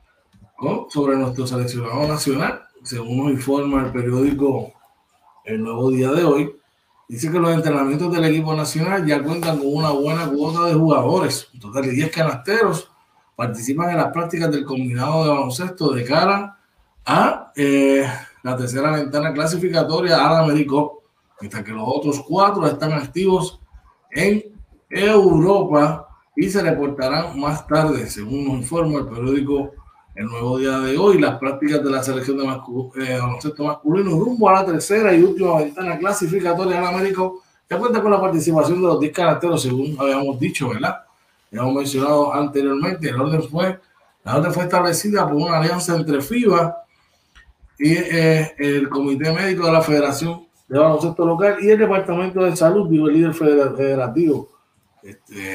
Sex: male